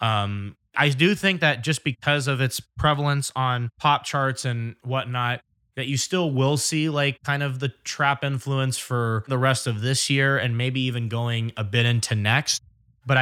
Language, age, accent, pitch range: English, 20-39, American, 110-135 Hz